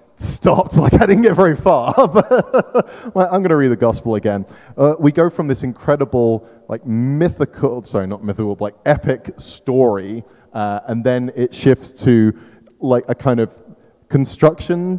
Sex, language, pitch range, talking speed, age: male, English, 110-150 Hz, 170 wpm, 20-39